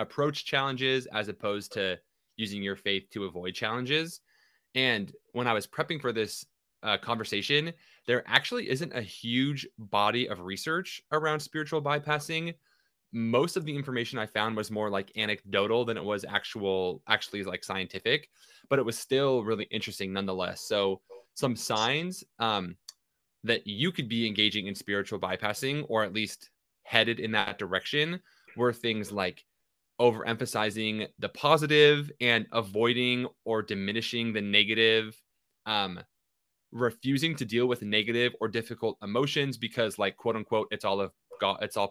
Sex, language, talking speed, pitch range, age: male, English, 150 wpm, 105-135 Hz, 20-39